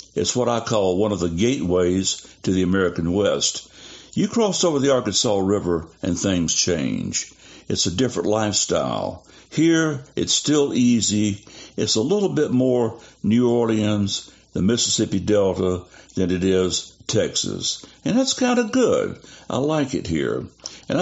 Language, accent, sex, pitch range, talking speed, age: English, American, male, 95-125 Hz, 150 wpm, 60-79